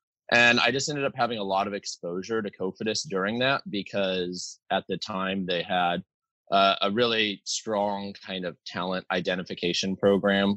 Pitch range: 95-110 Hz